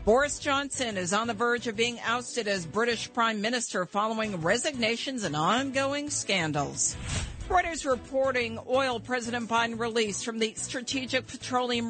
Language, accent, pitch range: English, American, 200-240 Hz